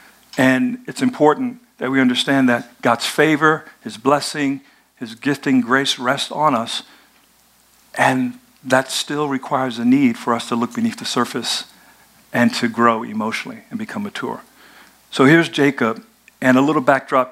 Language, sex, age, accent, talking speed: English, male, 50-69, American, 150 wpm